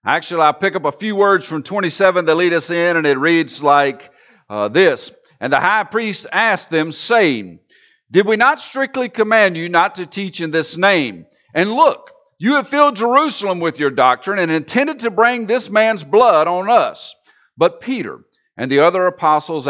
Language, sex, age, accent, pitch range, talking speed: English, male, 50-69, American, 125-195 Hz, 190 wpm